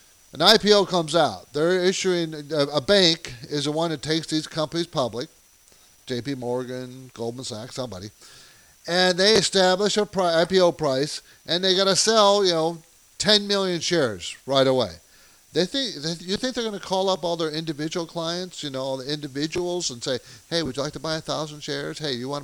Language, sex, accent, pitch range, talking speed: English, male, American, 135-185 Hz, 195 wpm